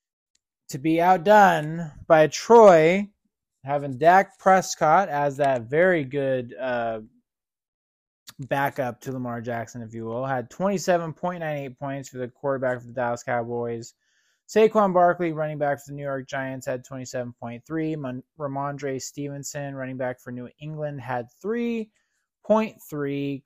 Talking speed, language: 130 wpm, English